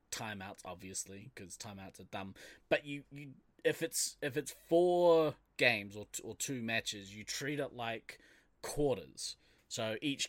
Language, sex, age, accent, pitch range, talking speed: English, male, 20-39, Australian, 100-120 Hz, 155 wpm